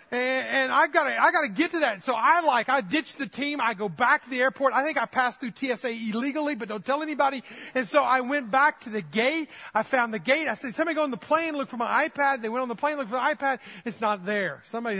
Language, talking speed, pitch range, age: English, 275 wpm, 195-270 Hz, 40-59